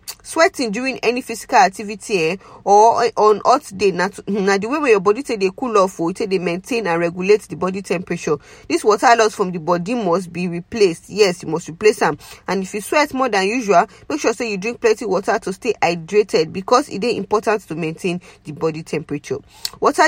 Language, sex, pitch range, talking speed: English, female, 180-240 Hz, 220 wpm